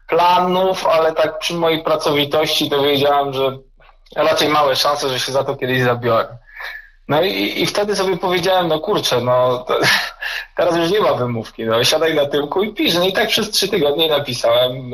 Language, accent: Polish, native